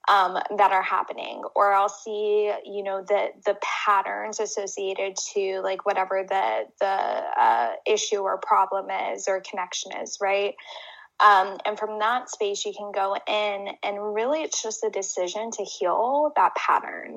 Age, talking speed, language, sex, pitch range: 10-29, 160 wpm, English, female, 195-220 Hz